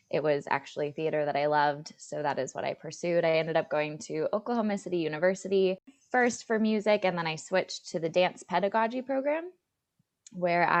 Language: English